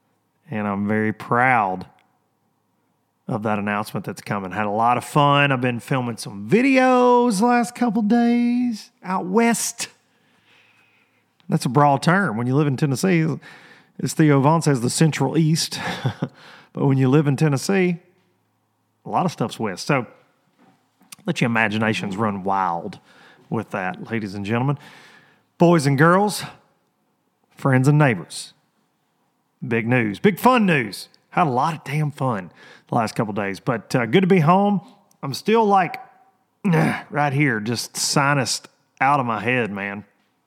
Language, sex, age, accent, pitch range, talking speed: English, male, 30-49, American, 115-175 Hz, 155 wpm